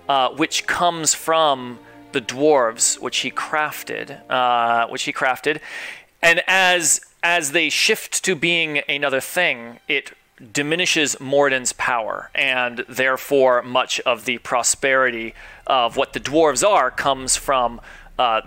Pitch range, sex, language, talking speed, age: 120-150 Hz, male, English, 135 wpm, 30-49